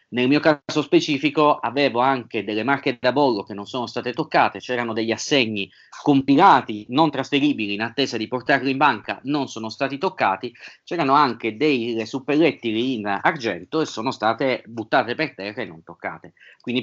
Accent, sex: native, male